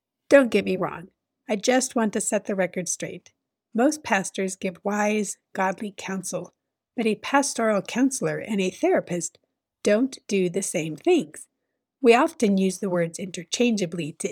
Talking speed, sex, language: 155 wpm, female, English